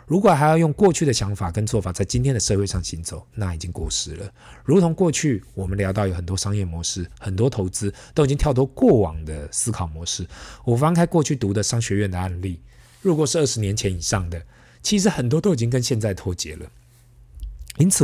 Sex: male